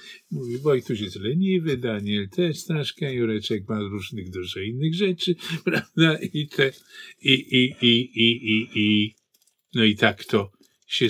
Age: 50-69